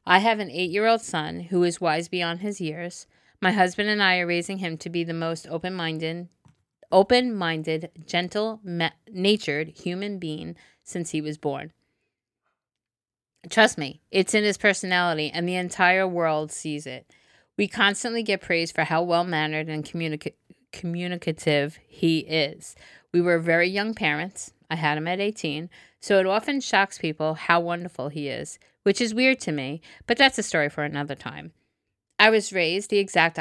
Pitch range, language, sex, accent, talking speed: 155-185 Hz, English, female, American, 165 wpm